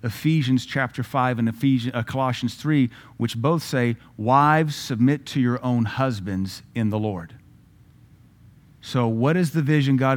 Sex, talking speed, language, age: male, 155 wpm, English, 40-59